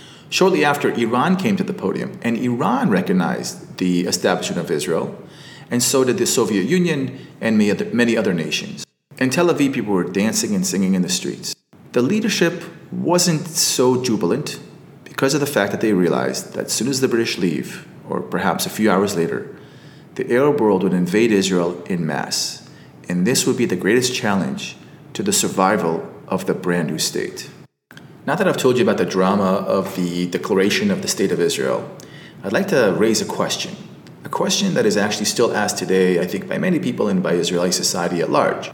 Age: 30-49